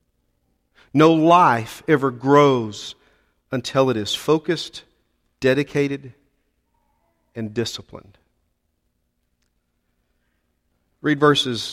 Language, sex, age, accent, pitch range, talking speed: English, male, 40-59, American, 95-140 Hz, 65 wpm